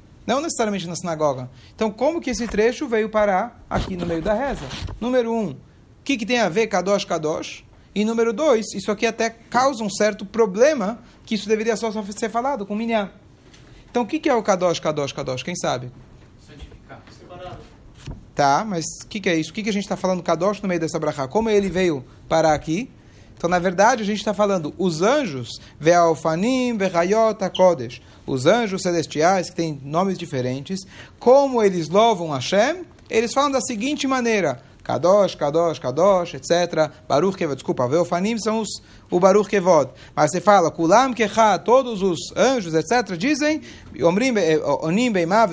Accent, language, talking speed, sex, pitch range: Brazilian, Portuguese, 175 wpm, male, 165-230 Hz